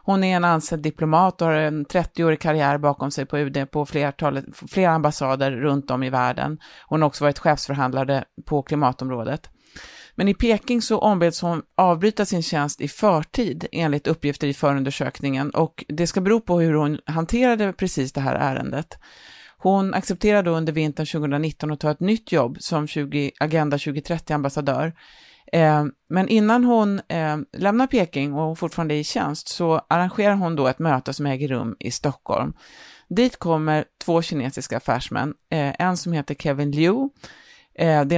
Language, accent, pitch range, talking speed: Swedish, native, 140-170 Hz, 160 wpm